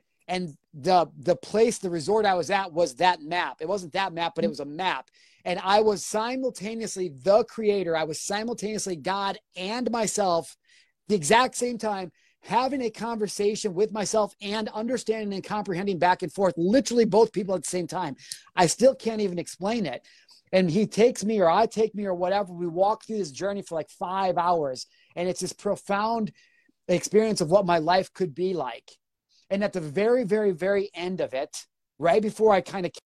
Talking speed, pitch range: 195 wpm, 175-215 Hz